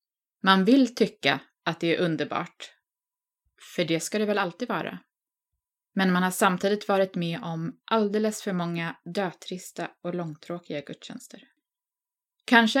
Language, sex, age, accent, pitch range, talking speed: Swedish, female, 20-39, native, 170-235 Hz, 135 wpm